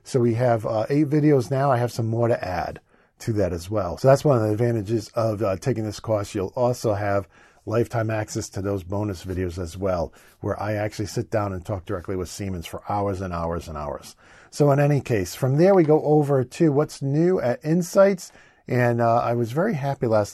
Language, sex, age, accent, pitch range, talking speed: English, male, 50-69, American, 105-130 Hz, 225 wpm